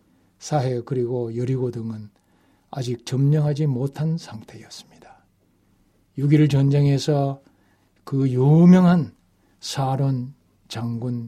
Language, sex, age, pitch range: Korean, male, 60-79, 110-165 Hz